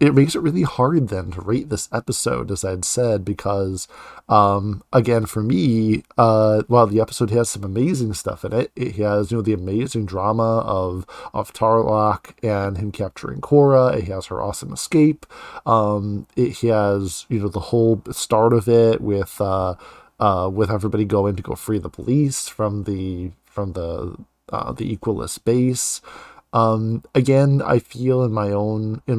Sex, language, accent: male, English, American